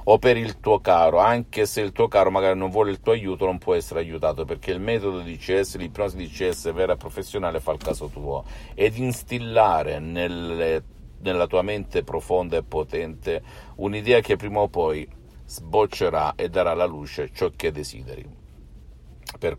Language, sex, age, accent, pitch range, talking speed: Italian, male, 50-69, native, 80-105 Hz, 175 wpm